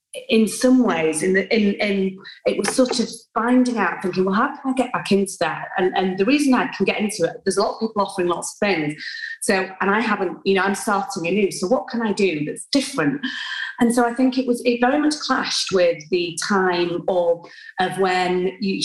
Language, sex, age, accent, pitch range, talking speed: English, female, 30-49, British, 175-230 Hz, 235 wpm